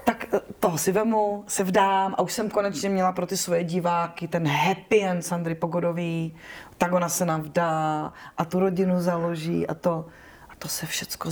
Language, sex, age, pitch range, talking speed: Czech, female, 30-49, 170-200 Hz, 180 wpm